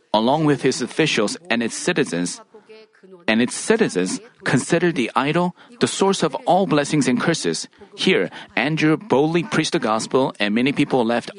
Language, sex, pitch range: Korean, male, 130-185 Hz